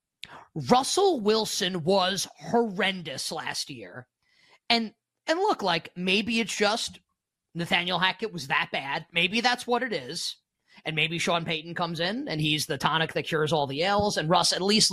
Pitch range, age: 155-220 Hz, 30-49